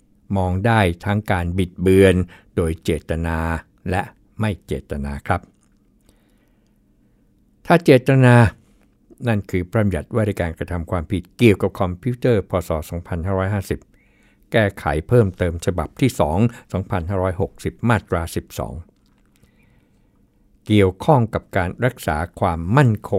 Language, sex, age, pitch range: Thai, male, 60-79, 85-110 Hz